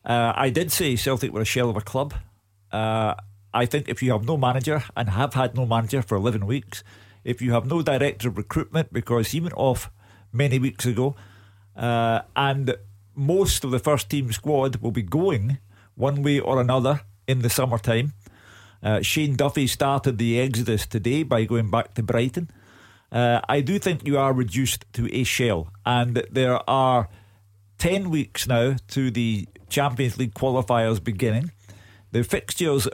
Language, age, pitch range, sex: English, 50-69, 110-140 Hz, male